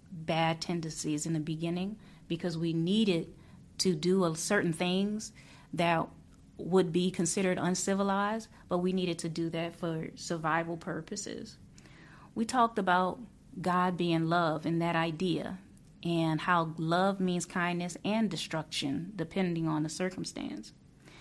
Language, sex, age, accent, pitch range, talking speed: English, female, 30-49, American, 165-195 Hz, 130 wpm